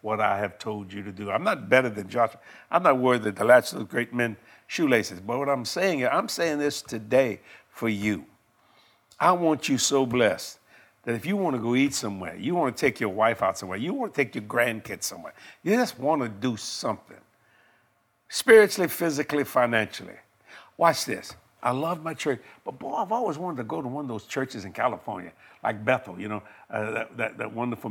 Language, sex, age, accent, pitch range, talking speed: English, male, 60-79, American, 110-165 Hz, 215 wpm